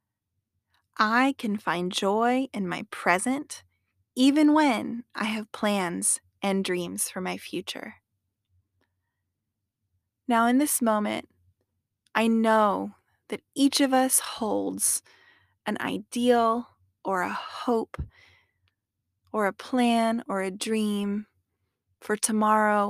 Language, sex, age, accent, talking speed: English, female, 20-39, American, 105 wpm